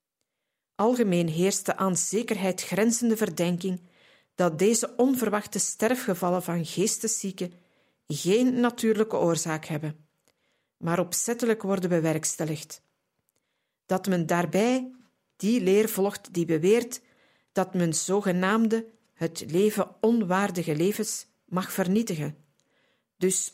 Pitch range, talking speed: 175-215 Hz, 100 wpm